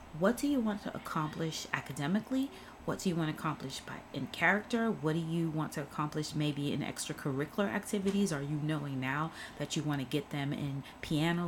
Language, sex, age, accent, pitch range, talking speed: English, female, 30-49, American, 150-195 Hz, 195 wpm